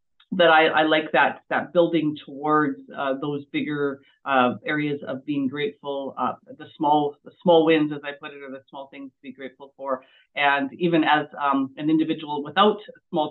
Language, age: English, 40-59